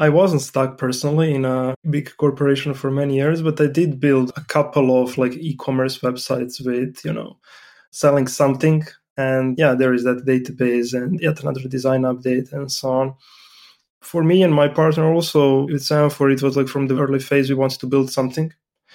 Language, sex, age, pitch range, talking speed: English, male, 20-39, 130-150 Hz, 190 wpm